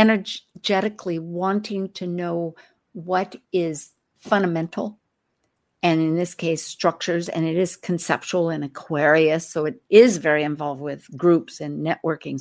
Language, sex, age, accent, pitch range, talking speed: English, female, 50-69, American, 165-220 Hz, 130 wpm